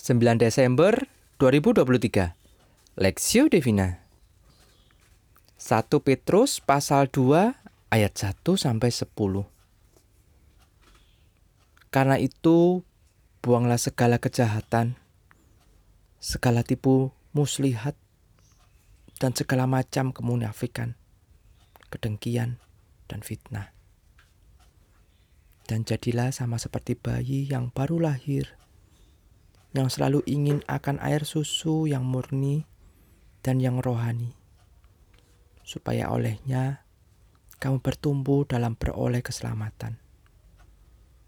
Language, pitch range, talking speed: Indonesian, 95-130 Hz, 80 wpm